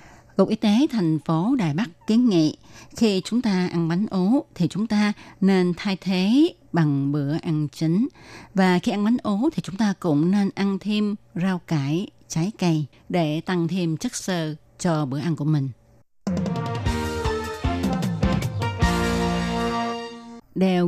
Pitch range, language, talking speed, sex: 155-205 Hz, Vietnamese, 150 wpm, female